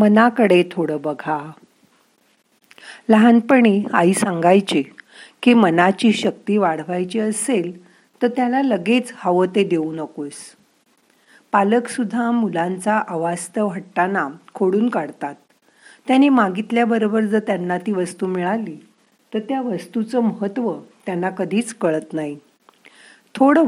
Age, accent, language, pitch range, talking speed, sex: 50-69, native, Marathi, 180-235 Hz, 105 wpm, female